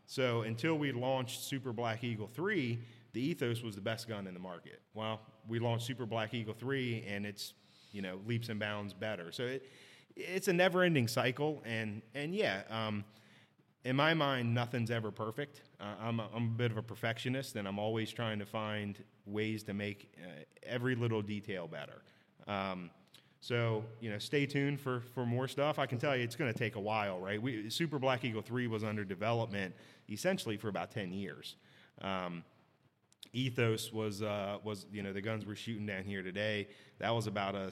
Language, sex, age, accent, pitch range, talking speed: English, male, 30-49, American, 105-130 Hz, 195 wpm